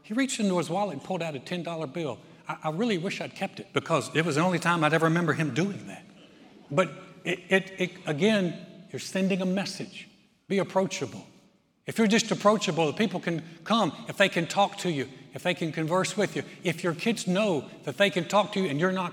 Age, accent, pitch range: 60-79, American, 150-185 Hz